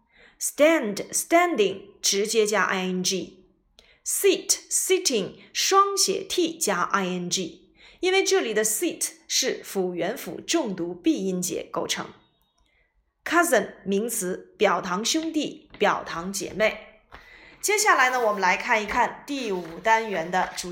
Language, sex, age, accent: Chinese, female, 20-39, native